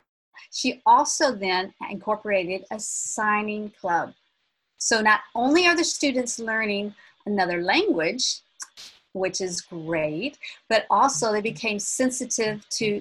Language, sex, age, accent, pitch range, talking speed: English, female, 40-59, American, 195-265 Hz, 115 wpm